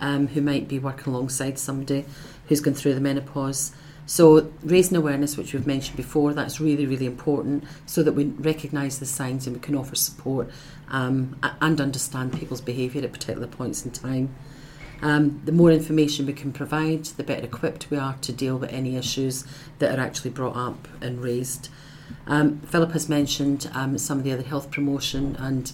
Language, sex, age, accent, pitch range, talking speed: English, female, 40-59, British, 135-150 Hz, 185 wpm